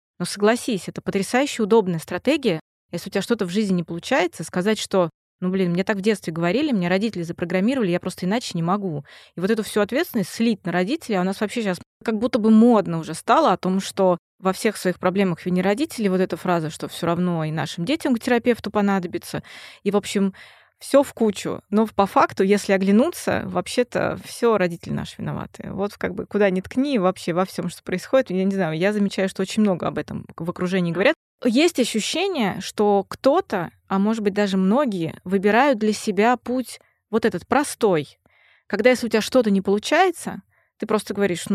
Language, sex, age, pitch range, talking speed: Russian, female, 20-39, 180-225 Hz, 200 wpm